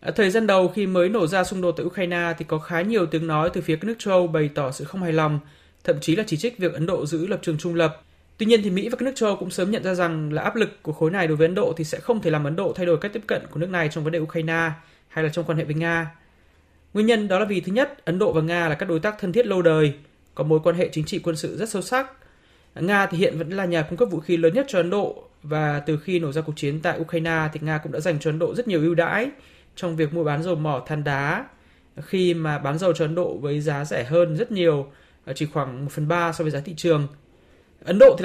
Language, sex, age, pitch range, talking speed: Vietnamese, male, 20-39, 160-195 Hz, 300 wpm